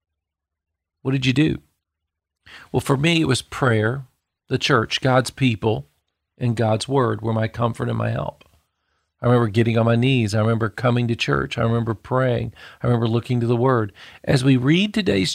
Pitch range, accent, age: 110-145 Hz, American, 40-59